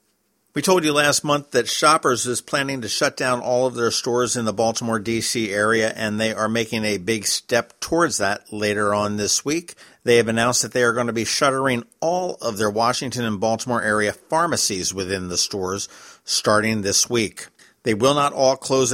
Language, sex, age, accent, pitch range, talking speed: English, male, 50-69, American, 105-130 Hz, 200 wpm